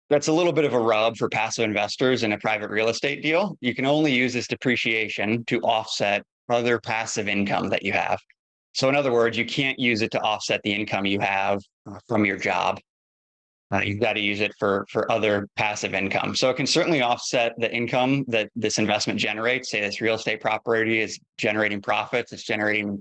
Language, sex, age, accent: English, male, 20-39, American